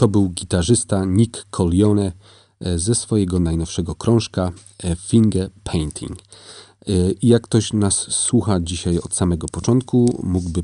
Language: Polish